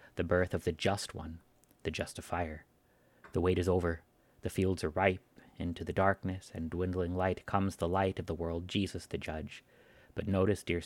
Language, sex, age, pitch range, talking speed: English, male, 30-49, 85-100 Hz, 190 wpm